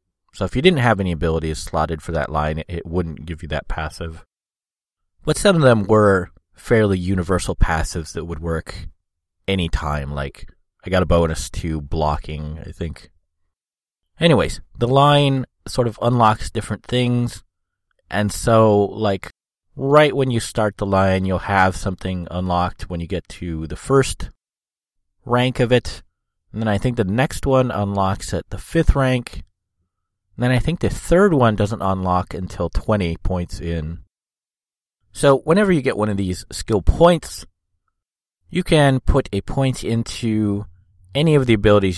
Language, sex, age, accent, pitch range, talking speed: English, male, 30-49, American, 85-110 Hz, 160 wpm